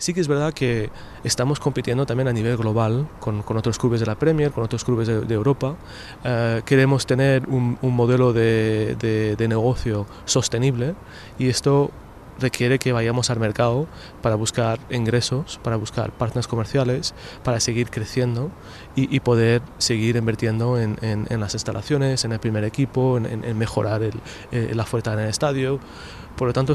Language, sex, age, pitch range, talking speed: Portuguese, male, 20-39, 110-130 Hz, 180 wpm